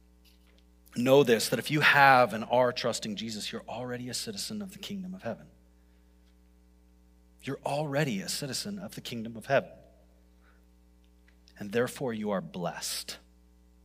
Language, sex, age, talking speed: English, male, 30-49, 145 wpm